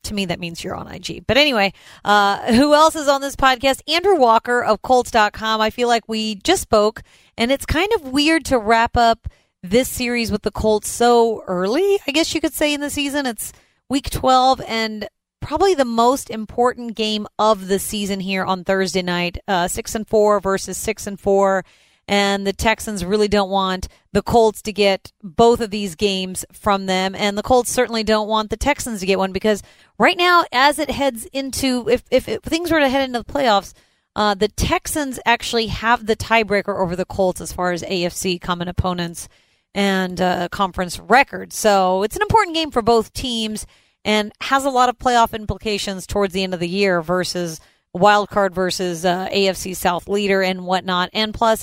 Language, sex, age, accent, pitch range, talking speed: English, female, 30-49, American, 190-255 Hz, 195 wpm